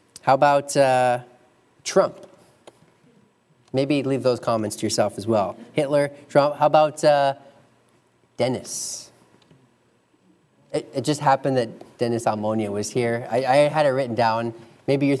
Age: 30-49